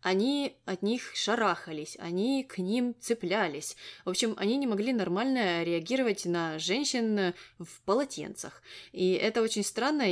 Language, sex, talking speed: Russian, female, 135 wpm